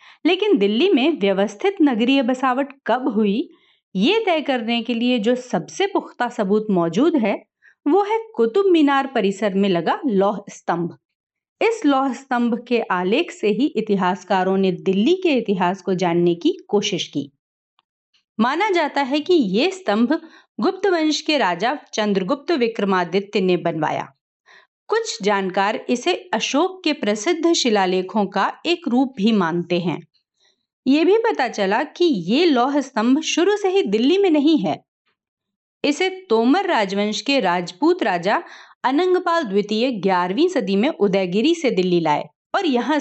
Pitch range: 200-330 Hz